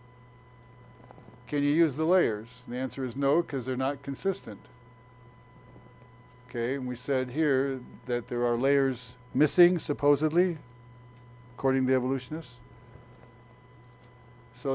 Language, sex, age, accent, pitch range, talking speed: English, male, 60-79, American, 125-140 Hz, 120 wpm